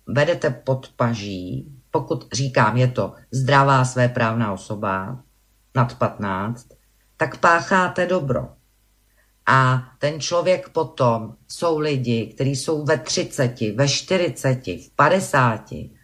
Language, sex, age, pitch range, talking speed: Slovak, female, 50-69, 125-160 Hz, 110 wpm